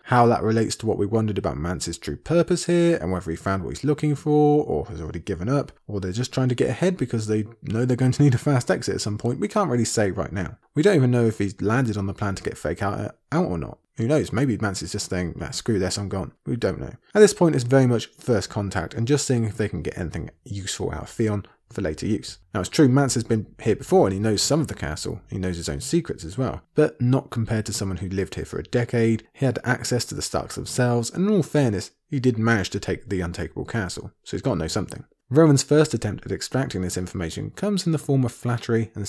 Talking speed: 275 wpm